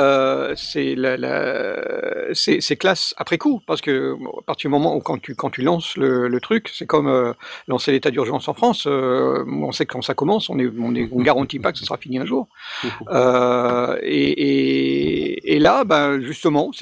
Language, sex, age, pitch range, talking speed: French, male, 50-69, 130-185 Hz, 215 wpm